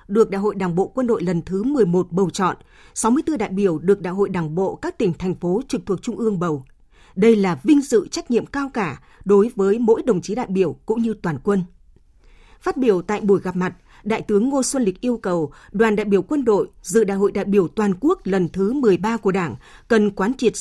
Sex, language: female, Vietnamese